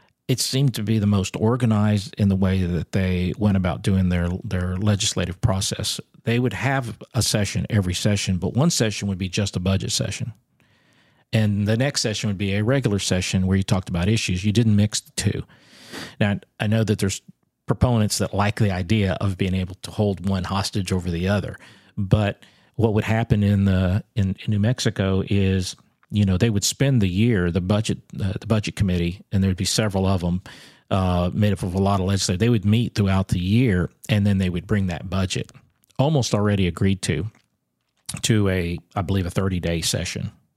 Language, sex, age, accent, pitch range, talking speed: English, male, 50-69, American, 95-110 Hz, 200 wpm